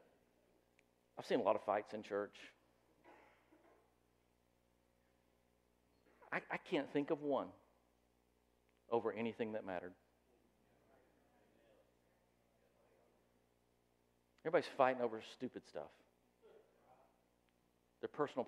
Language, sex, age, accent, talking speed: English, male, 50-69, American, 80 wpm